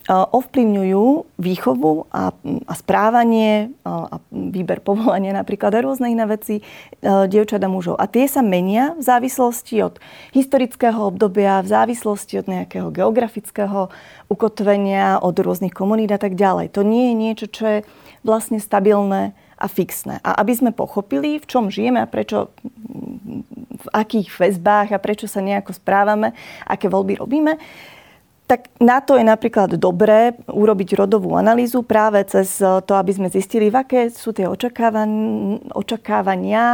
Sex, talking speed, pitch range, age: female, 145 wpm, 195-240 Hz, 30-49